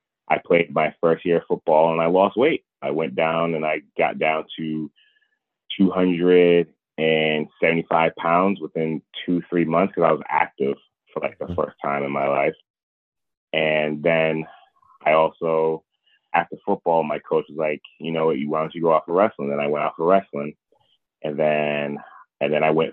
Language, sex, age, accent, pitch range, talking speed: English, male, 30-49, American, 75-90 Hz, 195 wpm